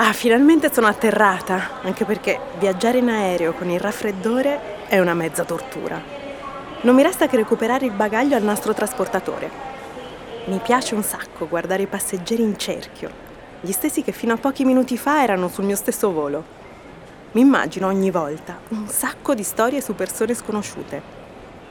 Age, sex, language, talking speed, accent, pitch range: 30-49, female, Italian, 165 wpm, native, 185-250 Hz